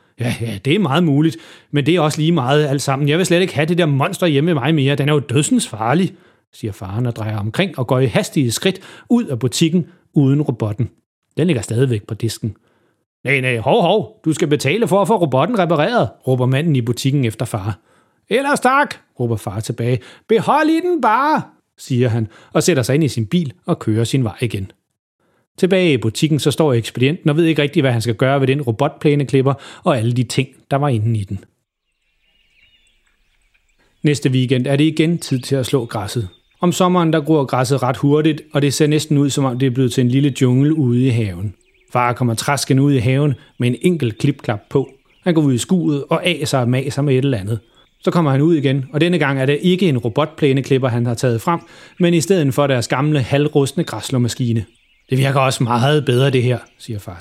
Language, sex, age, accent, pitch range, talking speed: Danish, male, 30-49, native, 120-160 Hz, 220 wpm